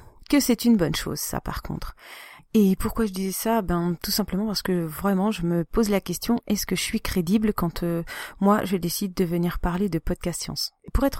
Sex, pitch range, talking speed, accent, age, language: female, 165-205 Hz, 230 wpm, French, 40-59, French